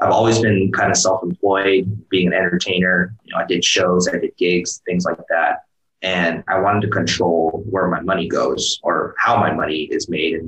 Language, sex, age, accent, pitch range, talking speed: English, male, 20-39, American, 90-105 Hz, 205 wpm